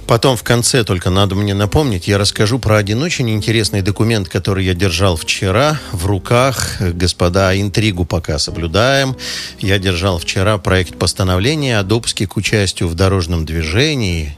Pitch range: 90-115 Hz